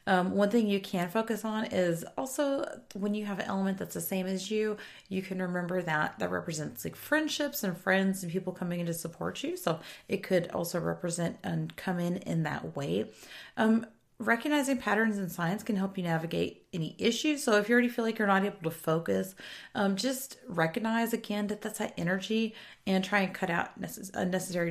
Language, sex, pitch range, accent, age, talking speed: English, female, 180-245 Hz, American, 30-49, 200 wpm